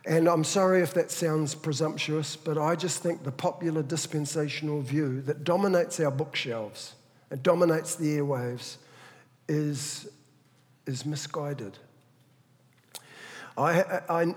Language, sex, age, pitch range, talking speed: English, male, 50-69, 140-160 Hz, 115 wpm